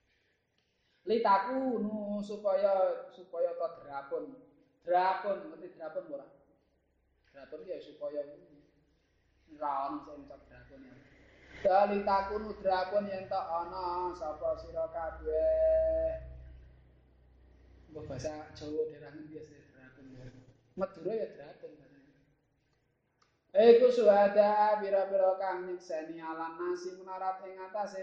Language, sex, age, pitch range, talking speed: Indonesian, male, 20-39, 155-200 Hz, 105 wpm